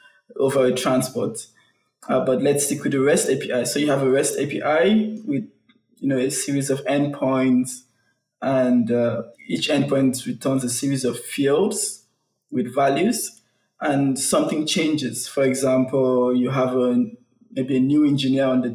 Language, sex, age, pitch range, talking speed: English, male, 20-39, 130-145 Hz, 155 wpm